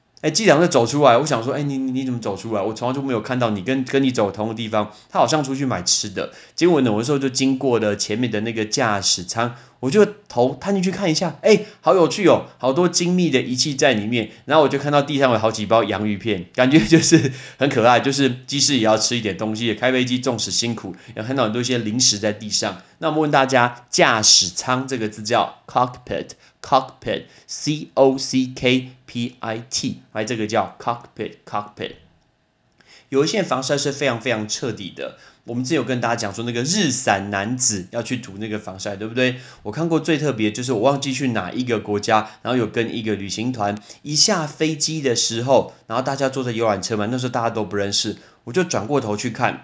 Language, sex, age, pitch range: Chinese, male, 30-49, 110-140 Hz